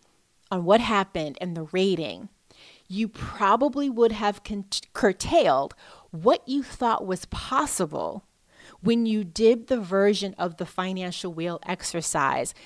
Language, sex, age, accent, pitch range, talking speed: English, female, 30-49, American, 165-215 Hz, 125 wpm